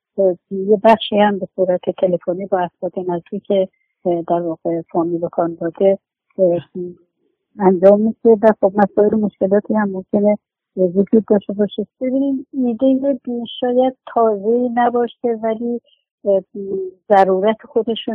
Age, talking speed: 50-69, 115 wpm